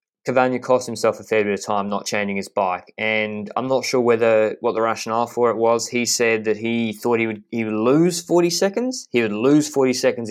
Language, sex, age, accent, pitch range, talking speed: English, male, 20-39, Australian, 110-130 Hz, 235 wpm